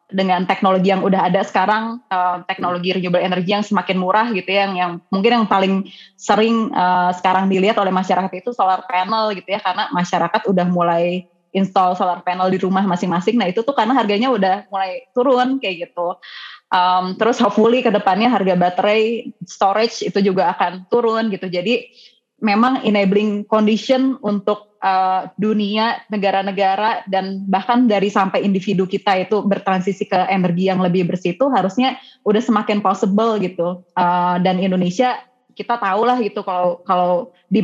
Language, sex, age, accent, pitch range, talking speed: Indonesian, female, 20-39, native, 185-225 Hz, 160 wpm